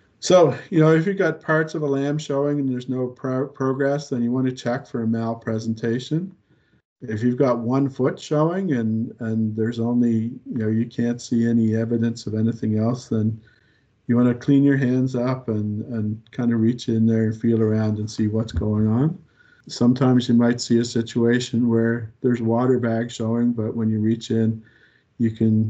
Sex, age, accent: male, 50-69, American